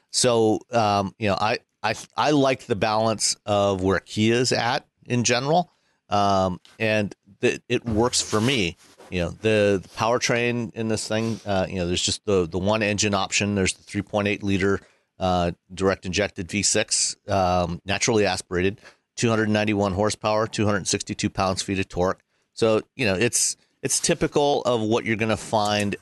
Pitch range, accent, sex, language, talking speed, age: 95-110 Hz, American, male, English, 170 wpm, 40-59